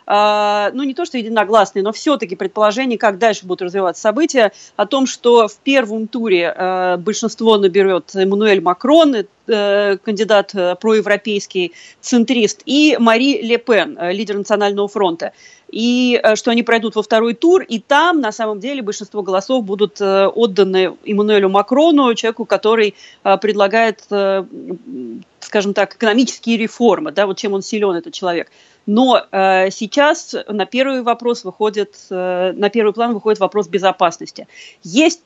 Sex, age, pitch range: female, 30-49, 195-235 Hz